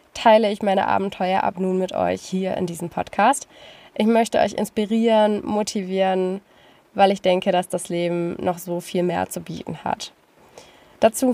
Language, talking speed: German, 165 wpm